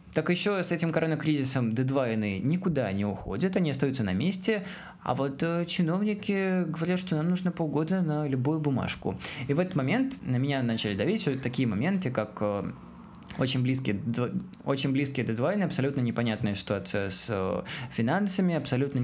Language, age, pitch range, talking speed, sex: Russian, 20-39, 115-160 Hz, 150 wpm, male